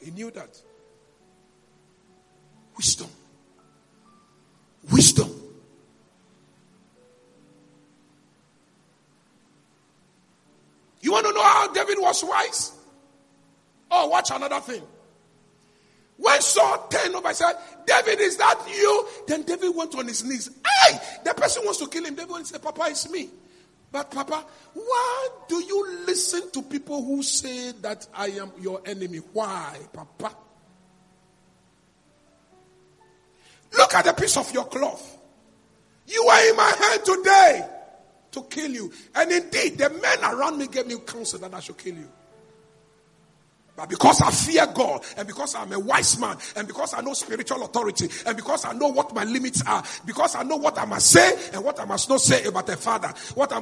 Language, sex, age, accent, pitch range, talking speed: English, male, 50-69, Nigerian, 235-355 Hz, 150 wpm